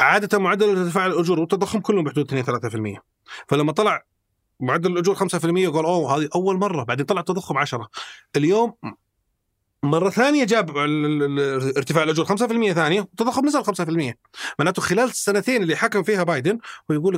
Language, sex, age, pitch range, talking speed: Arabic, male, 30-49, 155-220 Hz, 145 wpm